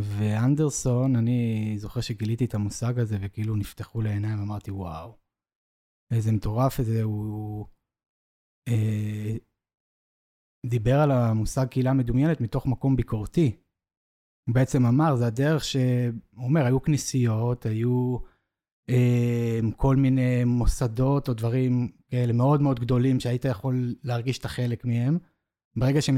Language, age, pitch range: Hebrew, 20-39, 110-130 Hz